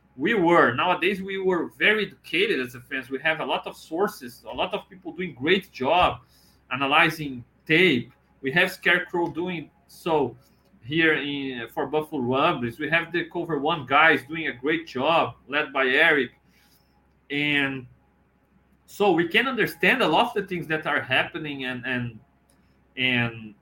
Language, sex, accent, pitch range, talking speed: English, male, Brazilian, 125-170 Hz, 165 wpm